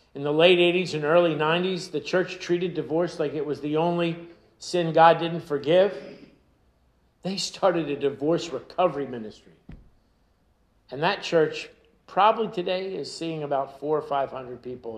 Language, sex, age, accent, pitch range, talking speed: English, male, 50-69, American, 150-205 Hz, 150 wpm